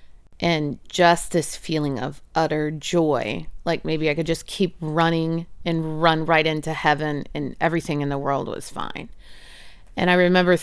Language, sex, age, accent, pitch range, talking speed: English, female, 30-49, American, 150-200 Hz, 165 wpm